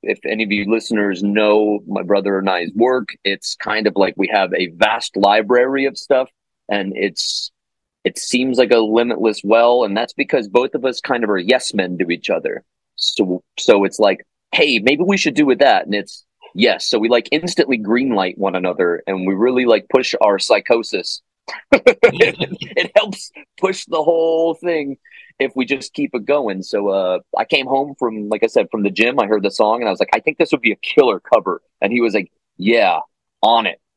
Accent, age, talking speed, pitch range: American, 30-49, 215 wpm, 100-130 Hz